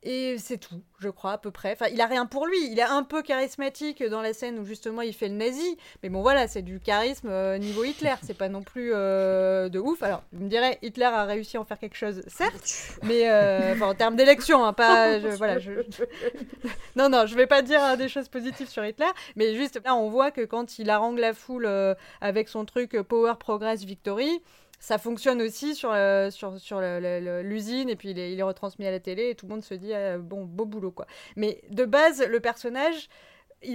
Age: 20-39